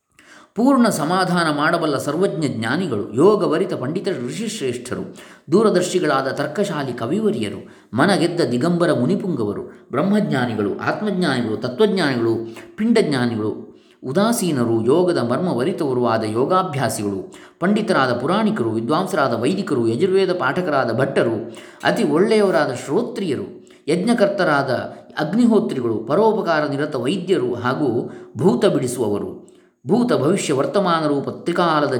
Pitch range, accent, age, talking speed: 120-195 Hz, native, 20-39, 85 wpm